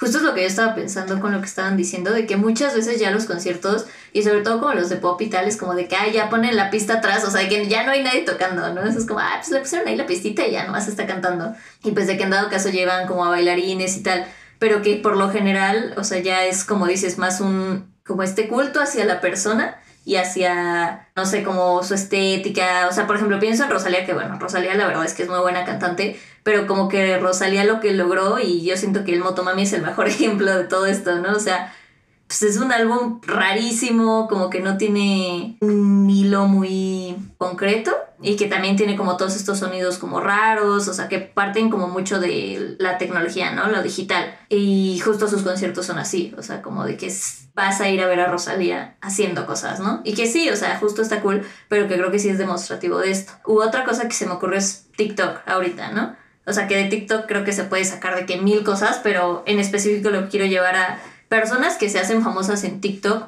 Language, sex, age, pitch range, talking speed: Spanish, female, 20-39, 185-210 Hz, 240 wpm